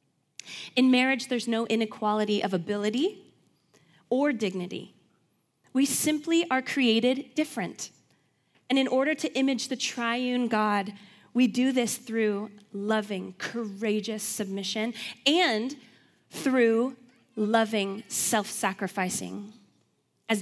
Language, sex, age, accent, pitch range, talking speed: English, female, 20-39, American, 205-255 Hz, 100 wpm